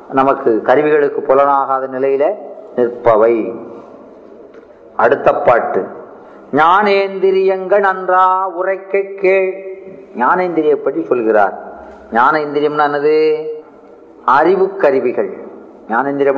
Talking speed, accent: 50 wpm, native